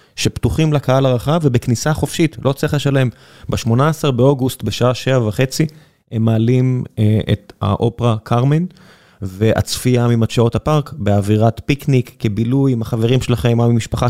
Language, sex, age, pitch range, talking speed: Hebrew, male, 20-39, 110-135 Hz, 130 wpm